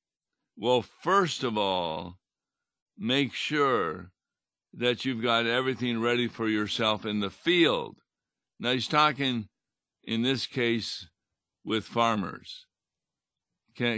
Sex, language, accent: male, English, American